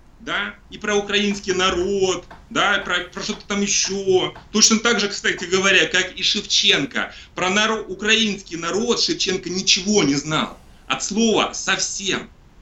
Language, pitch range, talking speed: Russian, 170-215 Hz, 135 wpm